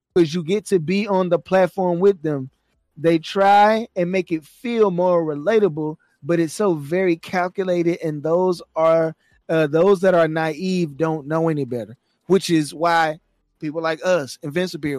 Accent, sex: American, male